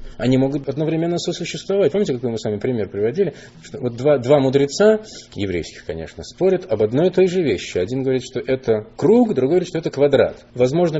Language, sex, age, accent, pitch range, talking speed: Russian, male, 20-39, native, 125-185 Hz, 190 wpm